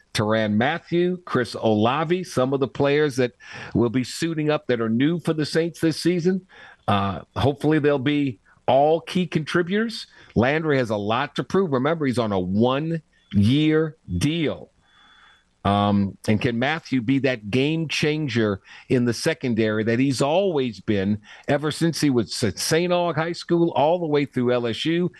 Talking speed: 160 wpm